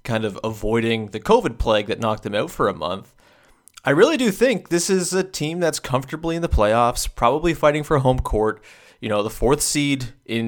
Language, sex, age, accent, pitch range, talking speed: English, male, 30-49, American, 110-145 Hz, 210 wpm